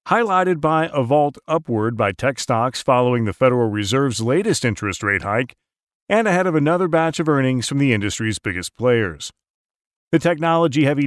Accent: American